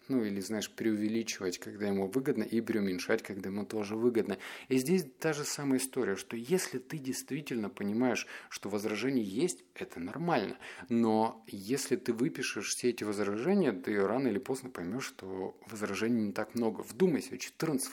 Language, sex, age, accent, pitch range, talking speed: Russian, male, 20-39, native, 105-130 Hz, 160 wpm